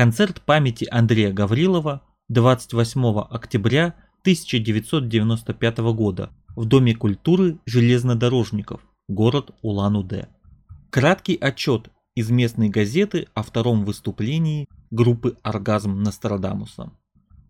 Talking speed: 85 wpm